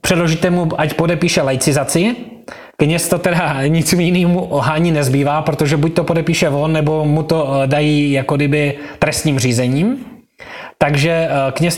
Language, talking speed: Slovak, 140 wpm